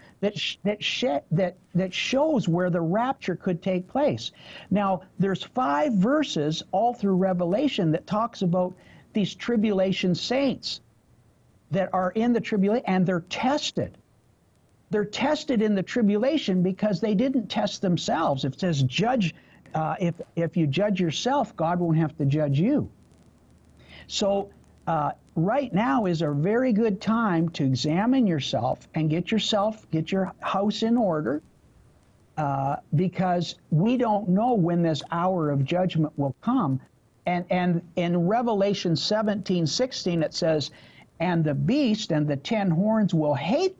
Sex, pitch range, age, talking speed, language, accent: male, 160-225 Hz, 60-79, 150 wpm, English, American